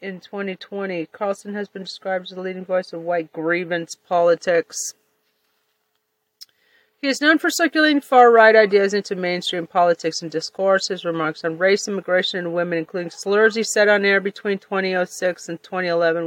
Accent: American